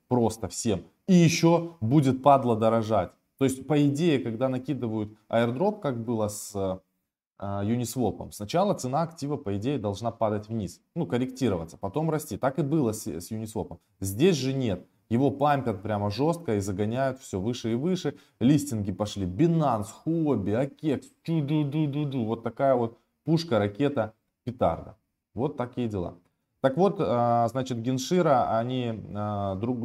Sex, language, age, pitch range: male, Russian, 20-39, 100-135 Hz